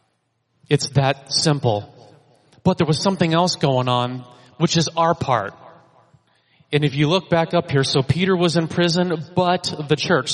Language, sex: English, male